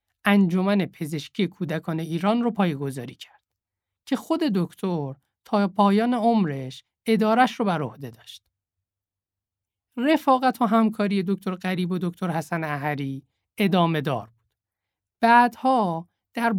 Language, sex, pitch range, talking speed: Persian, male, 145-210 Hz, 115 wpm